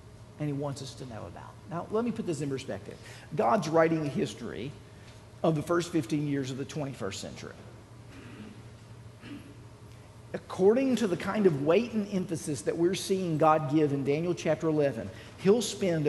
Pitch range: 110-160 Hz